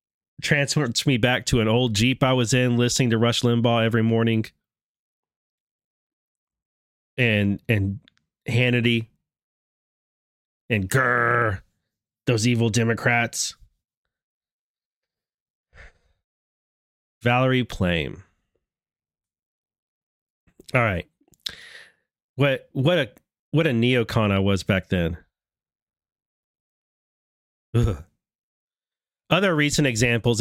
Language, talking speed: English, 85 wpm